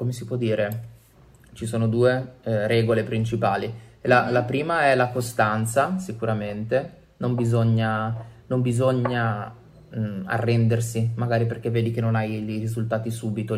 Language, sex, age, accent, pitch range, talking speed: Italian, male, 20-39, native, 110-120 Hz, 135 wpm